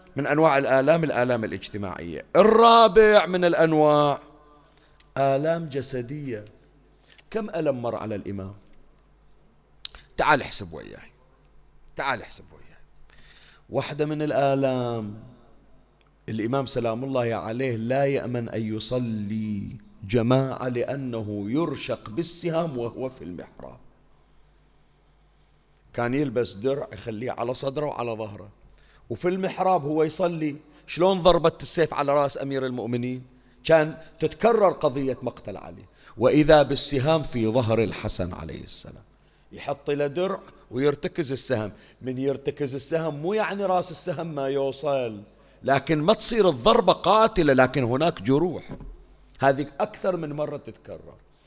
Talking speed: 115 wpm